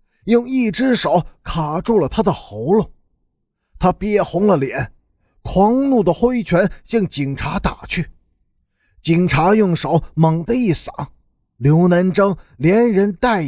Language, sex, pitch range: Chinese, male, 150-215 Hz